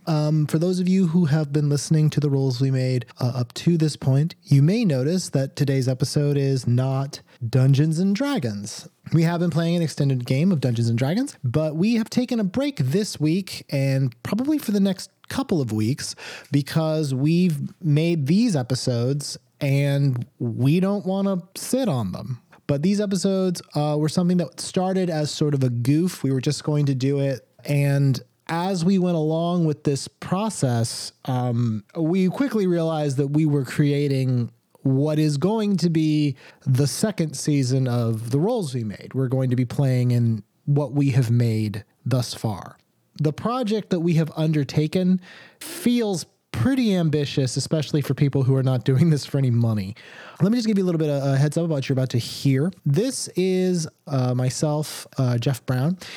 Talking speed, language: 190 wpm, English